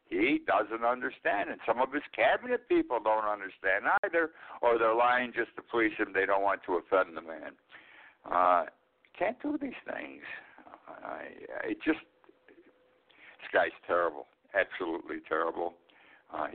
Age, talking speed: 60-79, 145 wpm